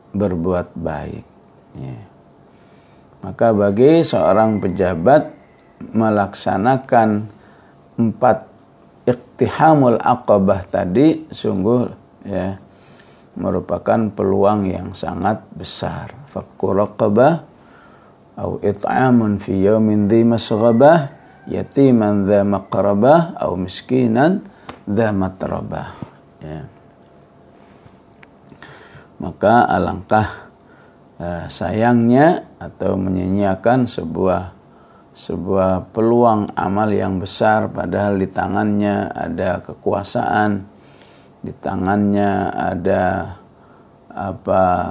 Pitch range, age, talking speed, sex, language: 95-110 Hz, 50-69, 70 wpm, male, English